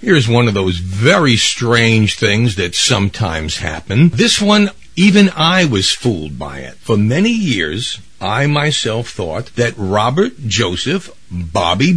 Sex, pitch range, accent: male, 95-140 Hz, American